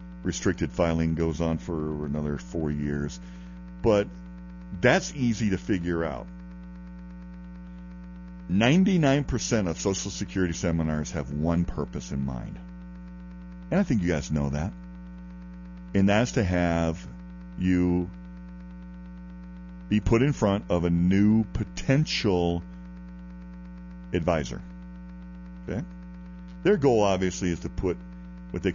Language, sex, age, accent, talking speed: English, male, 50-69, American, 115 wpm